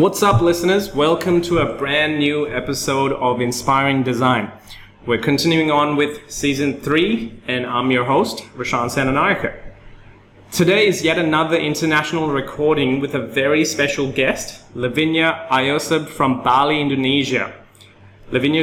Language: English